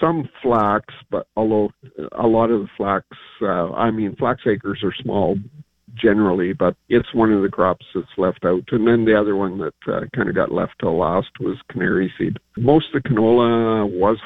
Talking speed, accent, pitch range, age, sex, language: 200 wpm, American, 100-120 Hz, 50-69, male, English